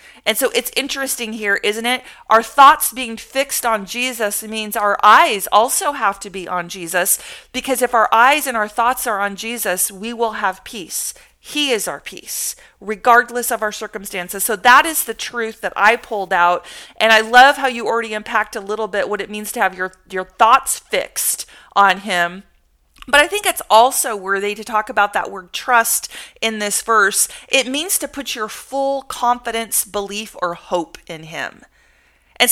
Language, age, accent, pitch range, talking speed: English, 40-59, American, 200-250 Hz, 190 wpm